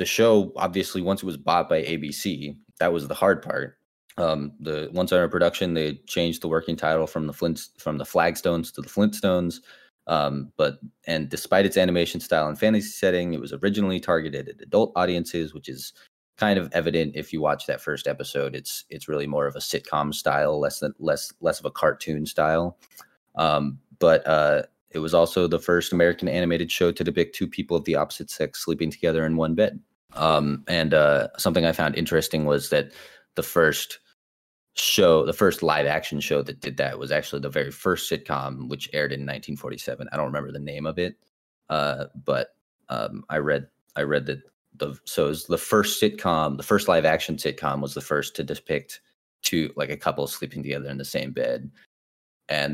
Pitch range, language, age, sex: 75-85 Hz, English, 20-39, male